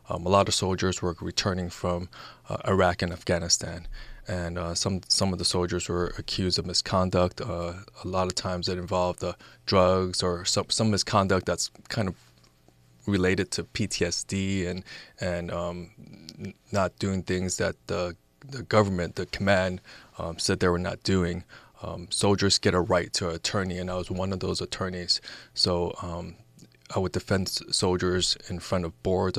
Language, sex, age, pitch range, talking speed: English, male, 20-39, 90-100 Hz, 170 wpm